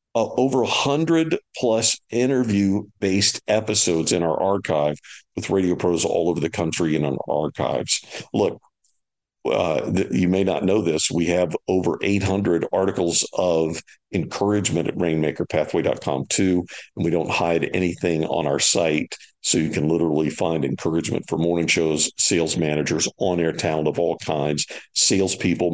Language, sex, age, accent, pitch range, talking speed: English, male, 50-69, American, 80-100 Hz, 140 wpm